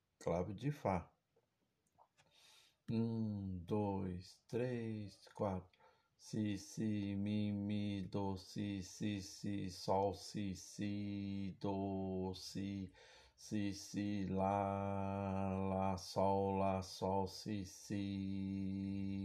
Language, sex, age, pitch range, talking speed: Portuguese, male, 60-79, 95-100 Hz, 95 wpm